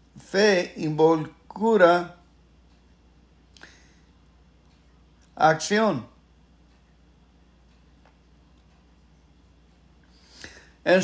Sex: male